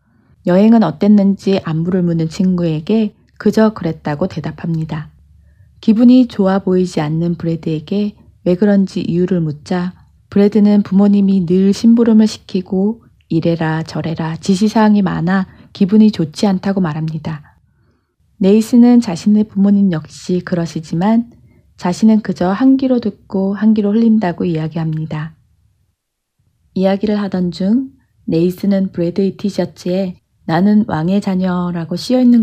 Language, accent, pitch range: Korean, native, 165-205 Hz